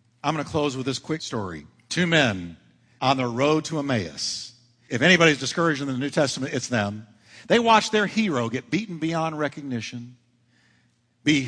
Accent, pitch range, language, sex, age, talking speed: American, 125-200 Hz, English, male, 50-69, 175 wpm